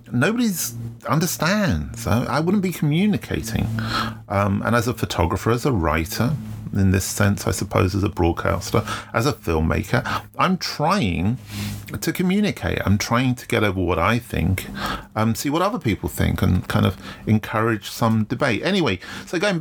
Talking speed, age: 160 wpm, 40-59